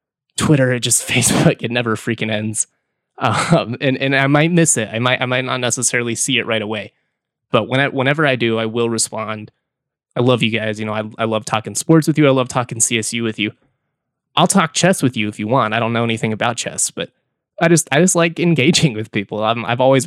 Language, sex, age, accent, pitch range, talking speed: English, male, 20-39, American, 110-140 Hz, 235 wpm